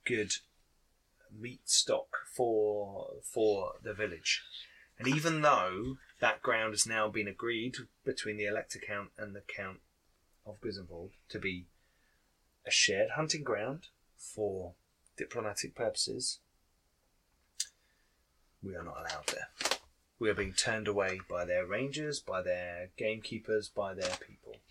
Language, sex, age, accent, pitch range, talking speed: English, male, 30-49, British, 85-125 Hz, 130 wpm